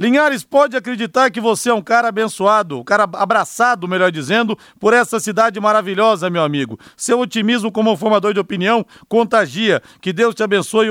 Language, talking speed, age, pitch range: Portuguese, 170 wpm, 40-59, 170-225 Hz